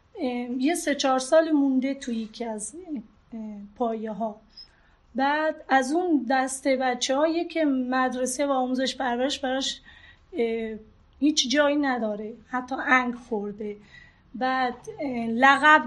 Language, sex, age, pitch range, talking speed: Persian, female, 30-49, 245-300 Hz, 115 wpm